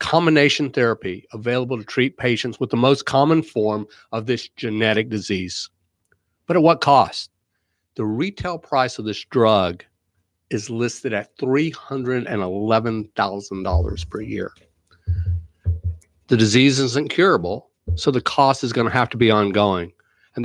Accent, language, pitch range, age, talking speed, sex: American, English, 100-135 Hz, 50-69, 130 wpm, male